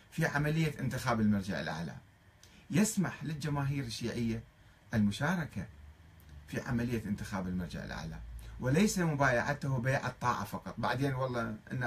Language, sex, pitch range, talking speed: Arabic, male, 105-160 Hz, 110 wpm